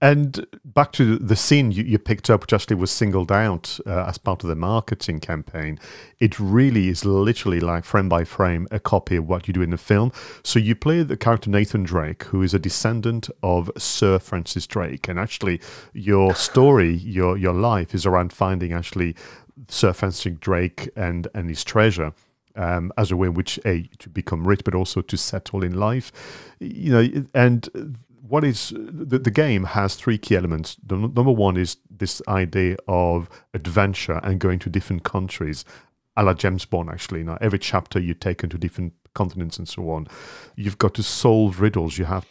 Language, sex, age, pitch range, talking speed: English, male, 40-59, 90-110 Hz, 190 wpm